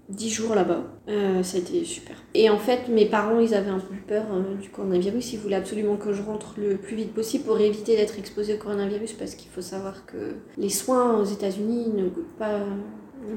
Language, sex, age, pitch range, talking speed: French, female, 30-49, 200-230 Hz, 230 wpm